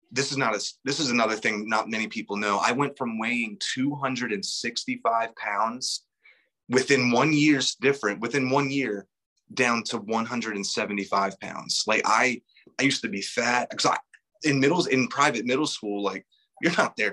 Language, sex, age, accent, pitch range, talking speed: English, male, 30-49, American, 100-130 Hz, 170 wpm